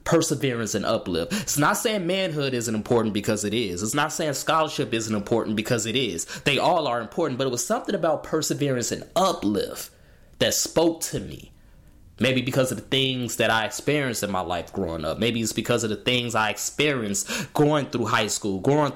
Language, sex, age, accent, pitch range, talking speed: English, male, 20-39, American, 115-165 Hz, 200 wpm